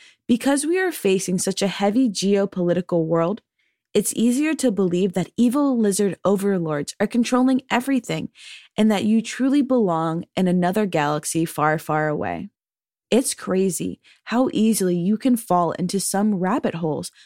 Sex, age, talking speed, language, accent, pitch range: female, 20-39, 145 wpm, English, American, 180-250 Hz